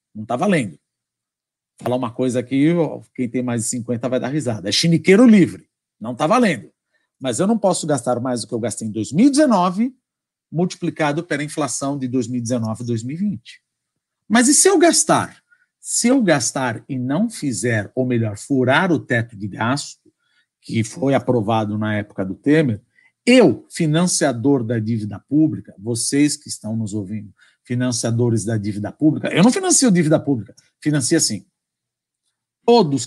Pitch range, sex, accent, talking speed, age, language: 120-155 Hz, male, Brazilian, 160 wpm, 50-69, Portuguese